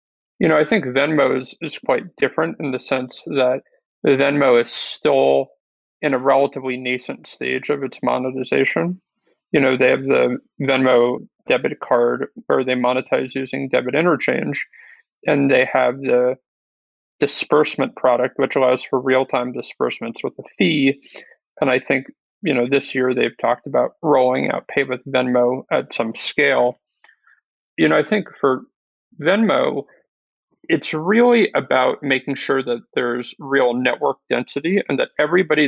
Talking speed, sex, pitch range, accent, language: 150 wpm, male, 125-140 Hz, American, English